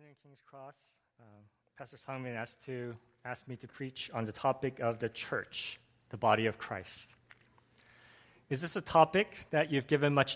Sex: male